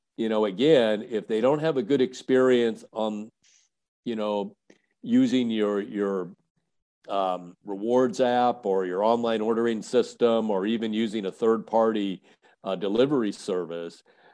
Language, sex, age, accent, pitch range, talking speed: English, male, 50-69, American, 100-120 Hz, 140 wpm